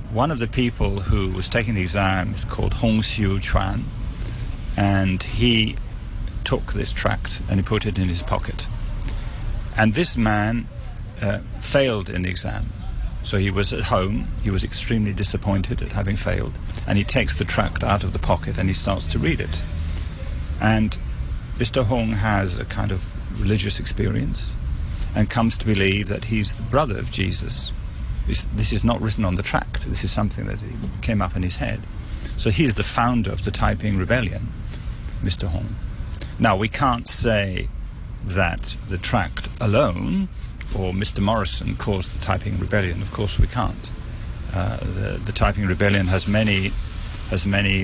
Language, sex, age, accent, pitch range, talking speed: English, male, 50-69, British, 95-110 Hz, 165 wpm